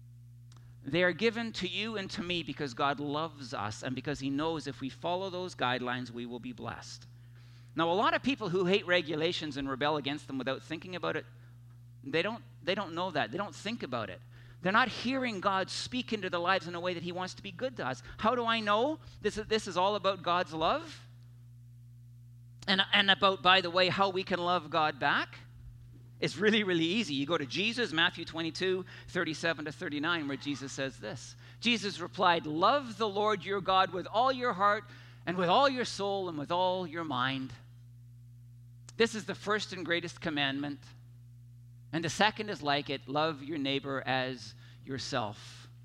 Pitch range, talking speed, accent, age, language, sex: 120-180 Hz, 195 wpm, American, 50-69, English, male